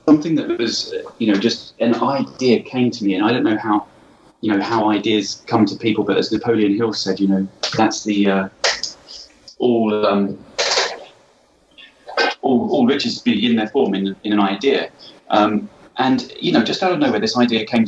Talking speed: 190 wpm